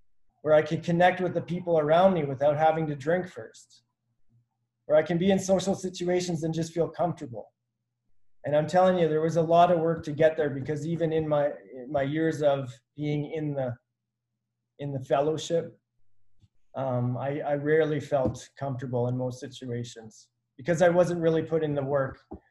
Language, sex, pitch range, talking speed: English, male, 120-150 Hz, 185 wpm